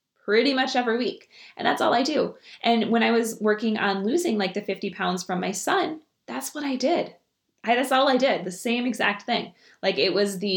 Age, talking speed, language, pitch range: 20-39, 220 wpm, English, 180-210 Hz